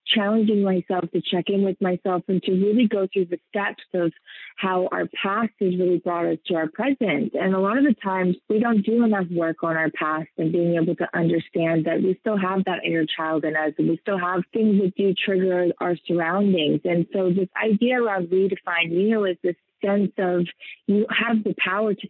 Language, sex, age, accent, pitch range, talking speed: English, female, 30-49, American, 175-205 Hz, 215 wpm